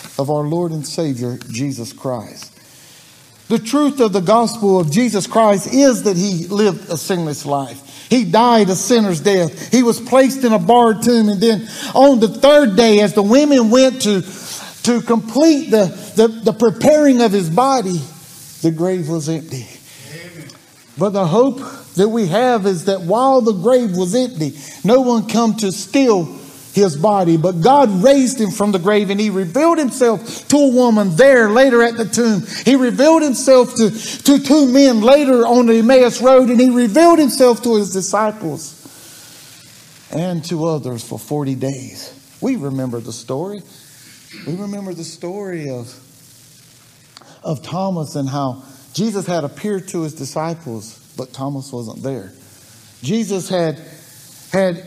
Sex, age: male, 50-69